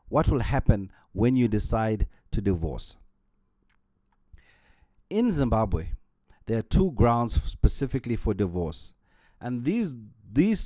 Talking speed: 115 wpm